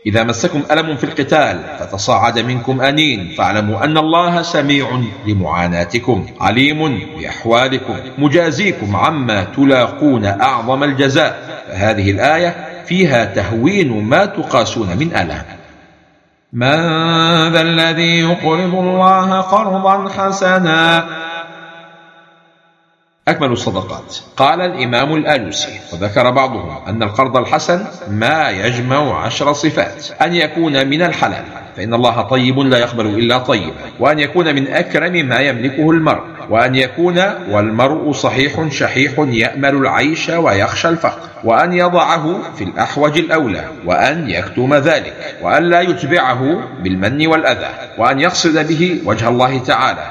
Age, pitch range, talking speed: 50-69, 125-165 Hz, 115 wpm